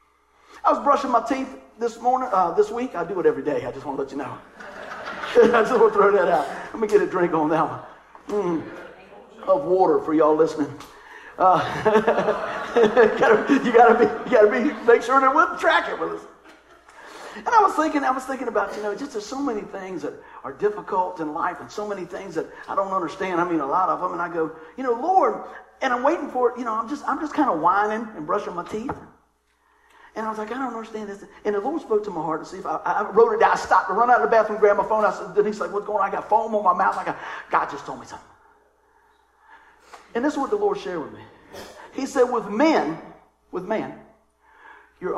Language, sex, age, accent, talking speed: English, male, 50-69, American, 245 wpm